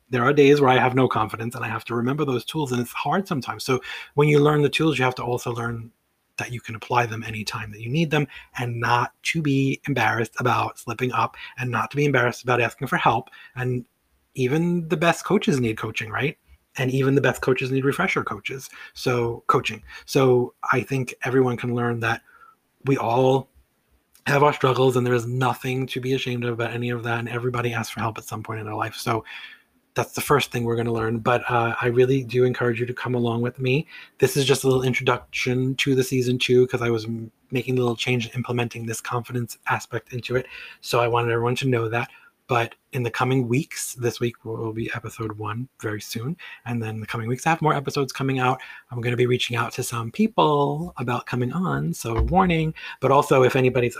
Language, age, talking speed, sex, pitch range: English, 30-49, 225 wpm, male, 115-135 Hz